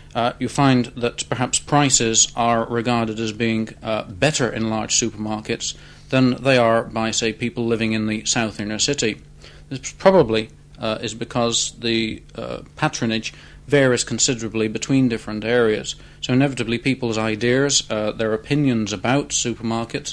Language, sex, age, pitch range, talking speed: English, male, 40-59, 110-125 Hz, 145 wpm